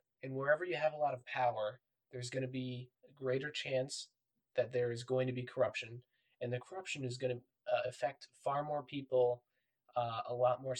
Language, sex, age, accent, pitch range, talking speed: English, male, 20-39, American, 120-125 Hz, 205 wpm